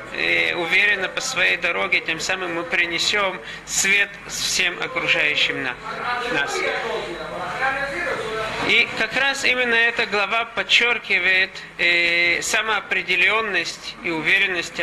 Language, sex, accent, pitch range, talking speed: Russian, male, native, 175-220 Hz, 95 wpm